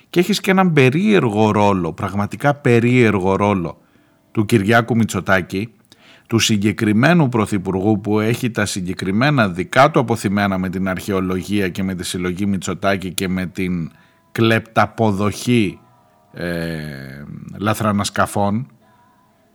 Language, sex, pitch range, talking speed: Greek, male, 100-130 Hz, 110 wpm